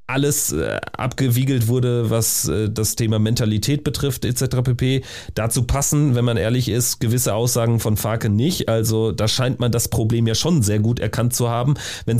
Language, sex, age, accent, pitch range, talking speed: German, male, 30-49, German, 110-135 Hz, 170 wpm